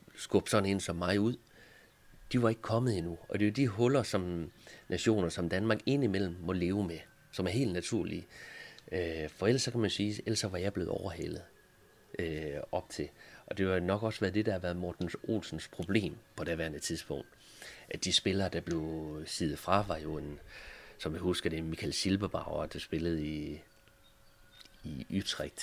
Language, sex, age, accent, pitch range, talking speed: Danish, male, 30-49, native, 85-110 Hz, 190 wpm